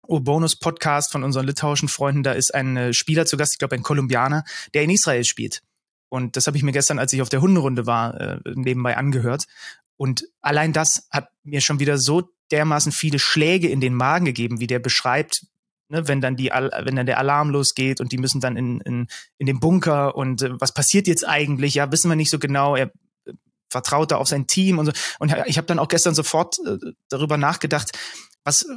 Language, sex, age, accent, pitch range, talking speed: German, male, 30-49, German, 135-165 Hz, 220 wpm